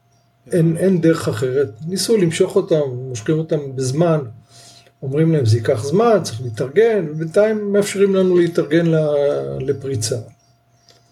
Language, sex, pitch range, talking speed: Hebrew, male, 135-180 Hz, 120 wpm